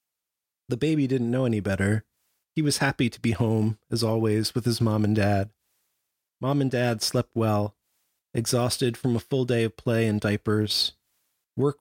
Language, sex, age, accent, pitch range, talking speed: English, male, 30-49, American, 105-130 Hz, 175 wpm